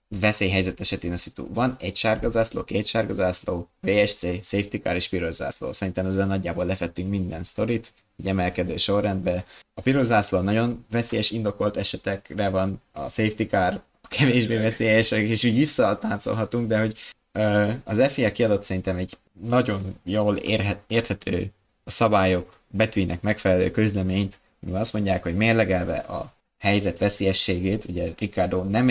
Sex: male